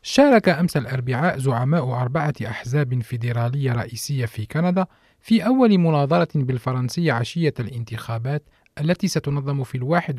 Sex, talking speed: male, 120 wpm